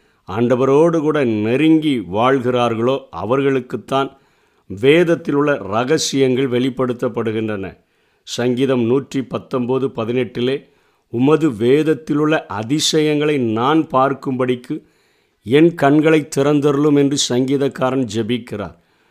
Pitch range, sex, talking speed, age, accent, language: 120-145 Hz, male, 70 wpm, 50-69, native, Tamil